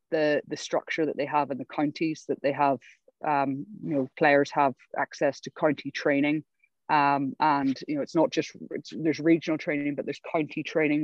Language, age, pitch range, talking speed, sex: English, 20-39, 140-155 Hz, 195 wpm, female